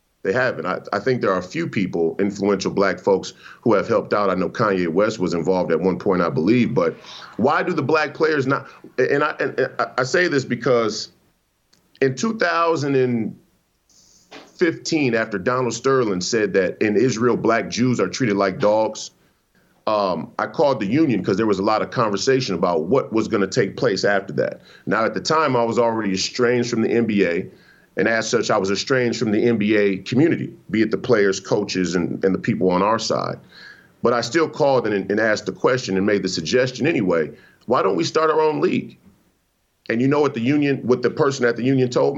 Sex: male